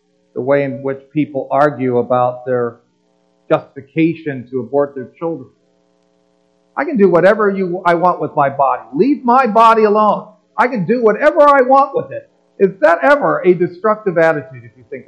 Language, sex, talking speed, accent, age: English, male, 175 wpm, American, 50-69